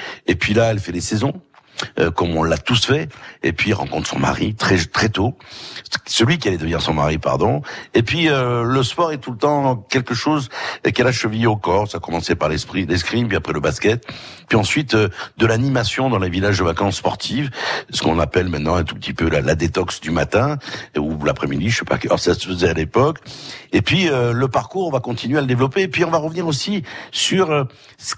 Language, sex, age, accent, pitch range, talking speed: French, male, 60-79, French, 90-130 Hz, 235 wpm